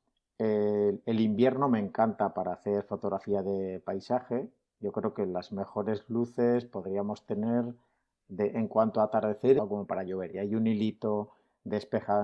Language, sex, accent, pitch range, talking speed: Spanish, male, Spanish, 100-115 Hz, 150 wpm